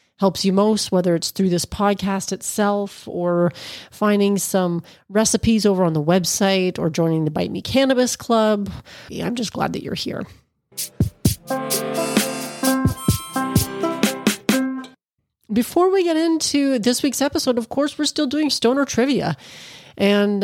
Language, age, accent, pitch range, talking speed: English, 30-49, American, 185-245 Hz, 130 wpm